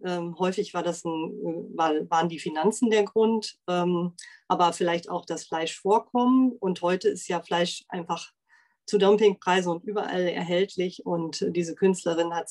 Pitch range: 170-210 Hz